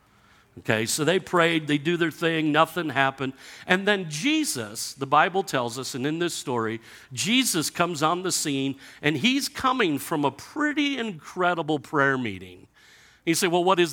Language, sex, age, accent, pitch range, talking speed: English, male, 50-69, American, 140-200 Hz, 170 wpm